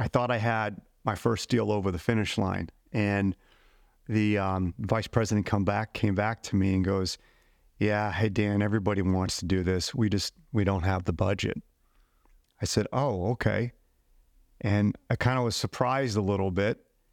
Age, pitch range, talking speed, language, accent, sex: 40-59, 100-125 Hz, 180 wpm, English, American, male